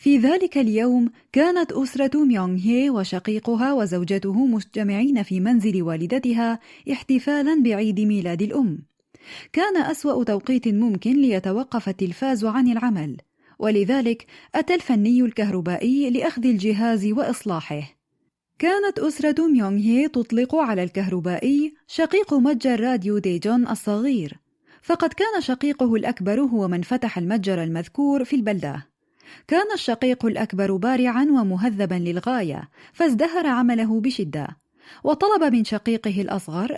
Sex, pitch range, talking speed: female, 195-275 Hz, 110 wpm